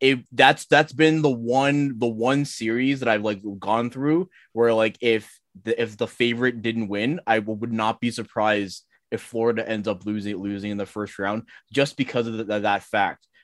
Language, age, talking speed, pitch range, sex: English, 20-39, 200 wpm, 105-125 Hz, male